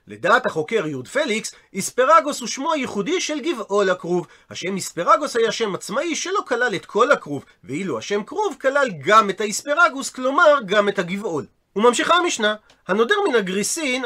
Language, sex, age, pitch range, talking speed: Hebrew, male, 40-59, 195-270 Hz, 160 wpm